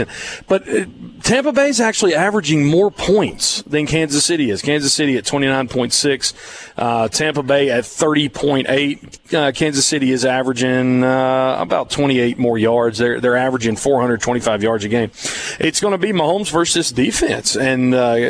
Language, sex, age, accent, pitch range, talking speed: English, male, 40-59, American, 125-155 Hz, 145 wpm